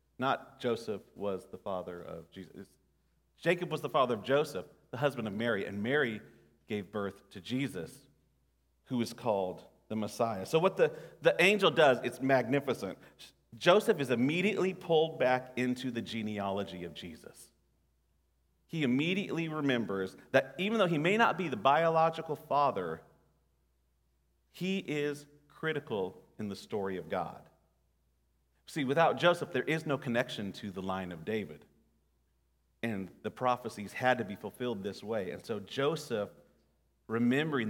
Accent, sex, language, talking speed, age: American, male, English, 145 wpm, 40-59